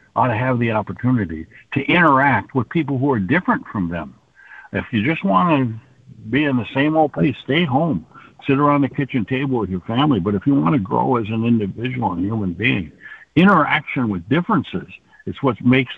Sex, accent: male, American